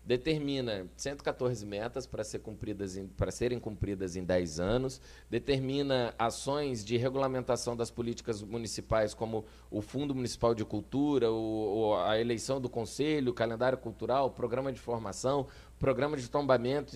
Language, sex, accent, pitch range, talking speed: Portuguese, male, Brazilian, 100-125 Hz, 140 wpm